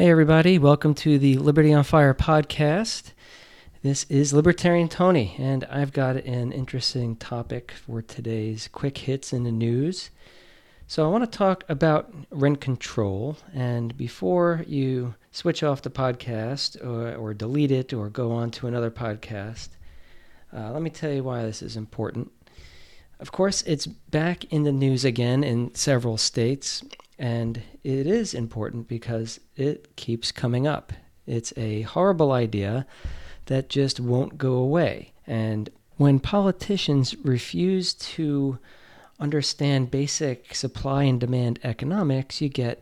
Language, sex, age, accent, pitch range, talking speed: English, male, 40-59, American, 115-150 Hz, 140 wpm